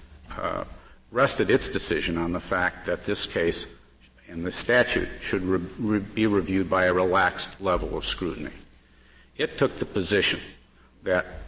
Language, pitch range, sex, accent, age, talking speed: English, 75-100 Hz, male, American, 50-69, 150 wpm